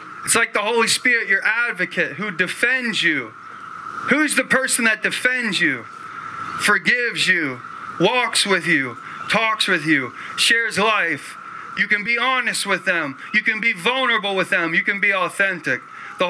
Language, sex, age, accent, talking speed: English, male, 30-49, American, 160 wpm